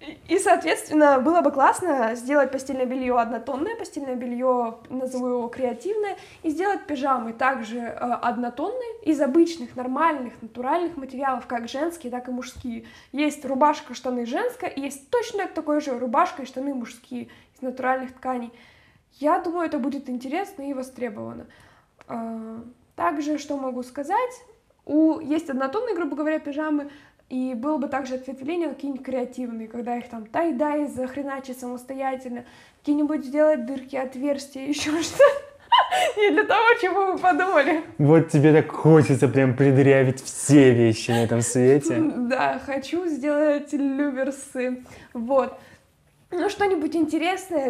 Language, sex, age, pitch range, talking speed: Russian, female, 20-39, 250-305 Hz, 135 wpm